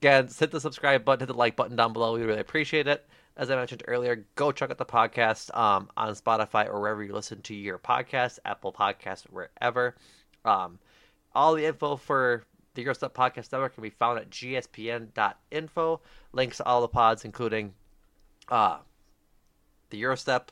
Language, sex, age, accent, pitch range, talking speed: English, male, 30-49, American, 105-130 Hz, 175 wpm